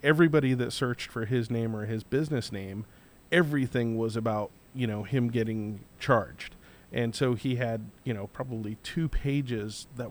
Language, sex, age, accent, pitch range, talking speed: English, male, 40-59, American, 115-135 Hz, 165 wpm